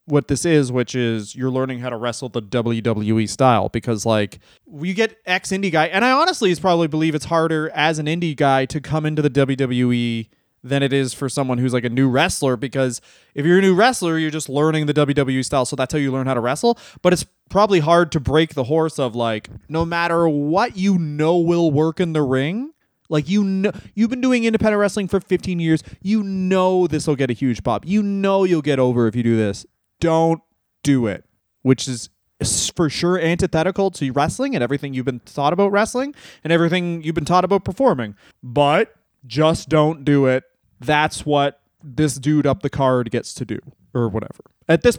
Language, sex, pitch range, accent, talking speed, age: English, male, 125-170 Hz, American, 210 wpm, 20-39